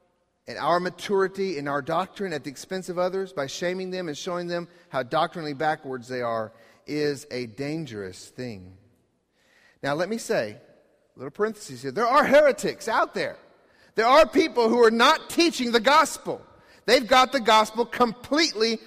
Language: English